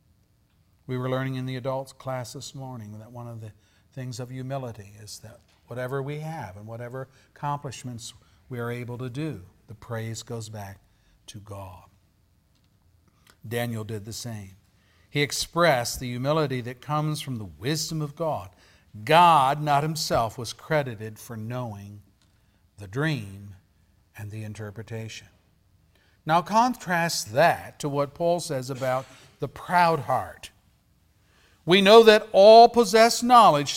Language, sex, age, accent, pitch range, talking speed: English, male, 50-69, American, 100-145 Hz, 140 wpm